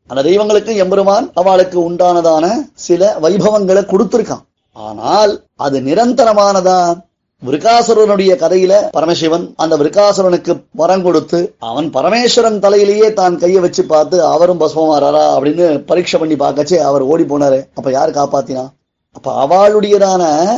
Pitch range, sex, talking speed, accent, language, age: 160-205 Hz, male, 95 wpm, native, Tamil, 30-49